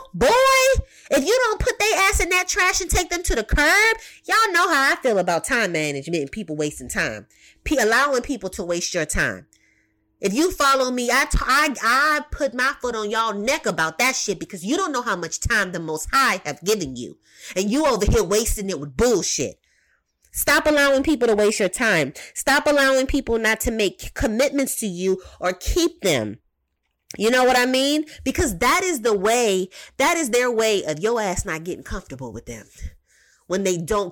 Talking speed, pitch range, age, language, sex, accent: 200 wpm, 180-275 Hz, 30-49, English, female, American